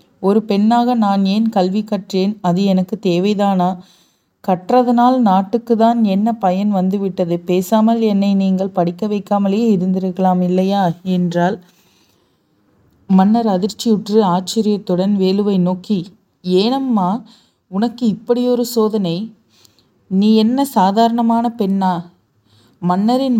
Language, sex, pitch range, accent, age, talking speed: Tamil, female, 185-225 Hz, native, 30-49, 95 wpm